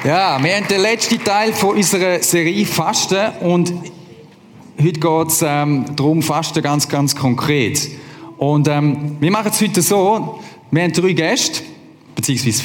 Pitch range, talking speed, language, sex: 125-160 Hz, 145 wpm, German, male